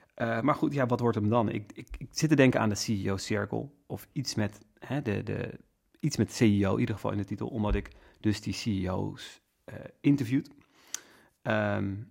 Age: 30-49